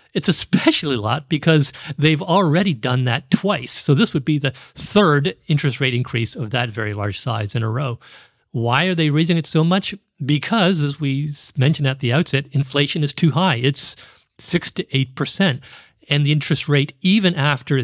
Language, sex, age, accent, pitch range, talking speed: English, male, 40-59, American, 120-155 Hz, 185 wpm